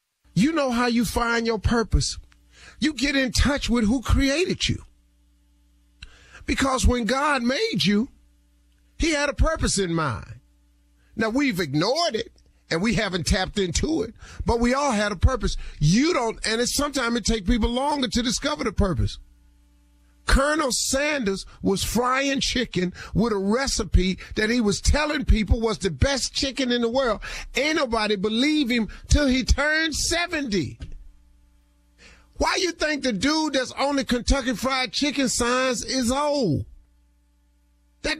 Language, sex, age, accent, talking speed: English, male, 40-59, American, 150 wpm